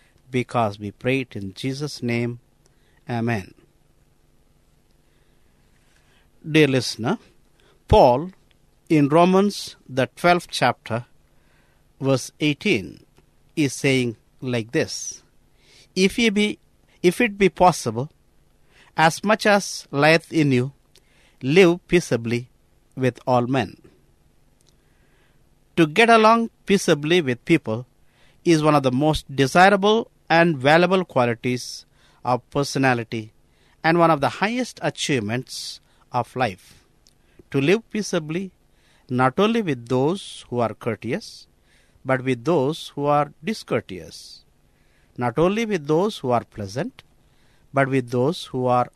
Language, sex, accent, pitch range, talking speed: English, male, Indian, 125-175 Hz, 115 wpm